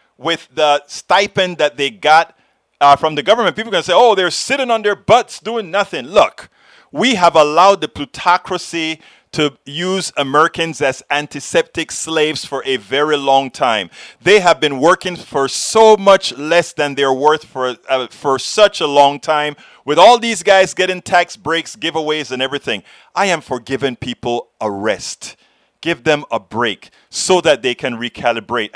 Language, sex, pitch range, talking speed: English, male, 140-190 Hz, 175 wpm